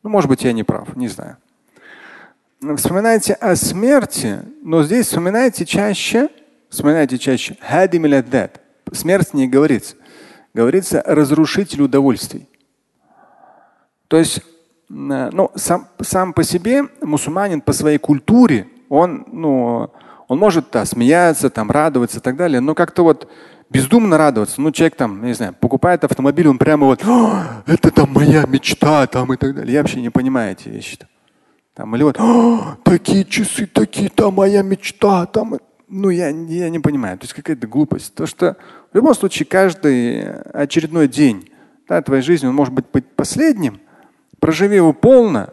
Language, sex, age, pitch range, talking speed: Russian, male, 30-49, 140-195 Hz, 155 wpm